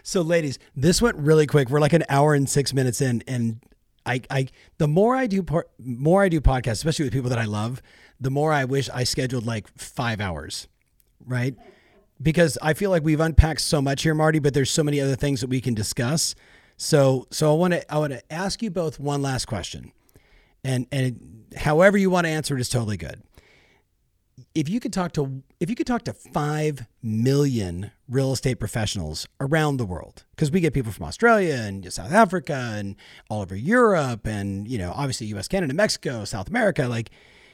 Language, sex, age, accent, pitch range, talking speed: English, male, 40-59, American, 115-160 Hz, 205 wpm